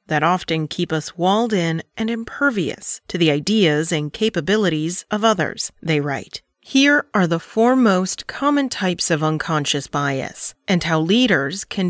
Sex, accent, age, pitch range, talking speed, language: female, American, 40-59, 165-210 Hz, 155 wpm, English